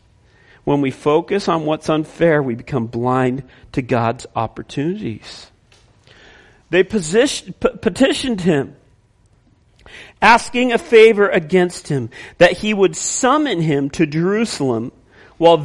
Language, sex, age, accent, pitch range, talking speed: English, male, 40-59, American, 170-230 Hz, 105 wpm